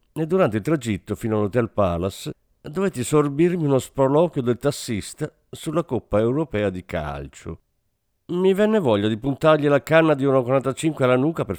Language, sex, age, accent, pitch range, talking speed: Italian, male, 50-69, native, 95-145 Hz, 155 wpm